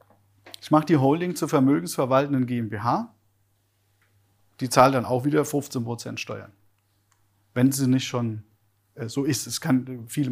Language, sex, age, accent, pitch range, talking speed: German, male, 40-59, German, 110-150 Hz, 135 wpm